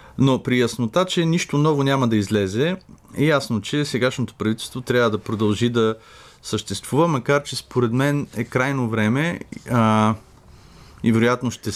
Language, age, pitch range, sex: Bulgarian, 30-49, 100-125 Hz, male